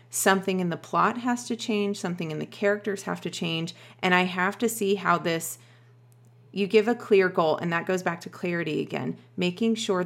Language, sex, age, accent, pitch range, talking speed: English, female, 40-59, American, 160-195 Hz, 210 wpm